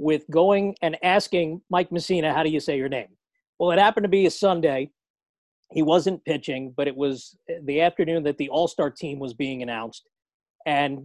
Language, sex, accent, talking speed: English, male, American, 190 wpm